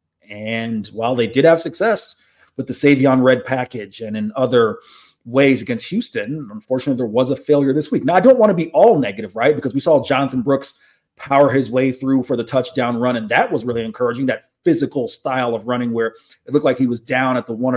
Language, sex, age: English, male, 30-49